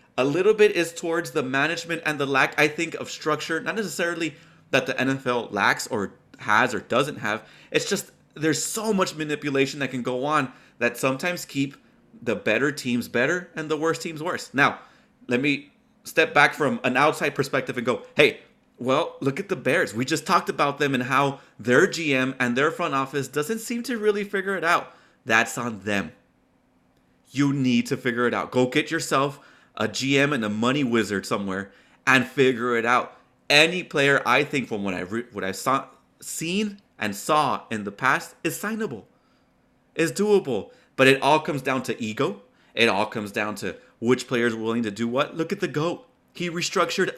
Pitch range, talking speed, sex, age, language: 125-175 Hz, 195 wpm, male, 30-49, English